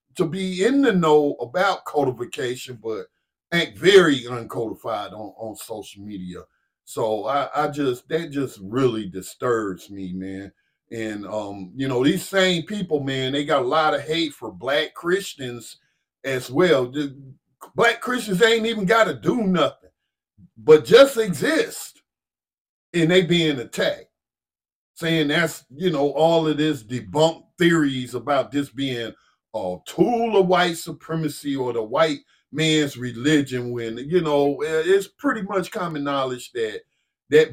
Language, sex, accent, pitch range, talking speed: English, male, American, 130-185 Hz, 145 wpm